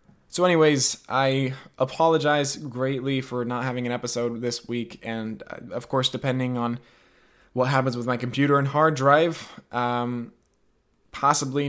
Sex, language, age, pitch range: male, English, 20-39, 125-160 Hz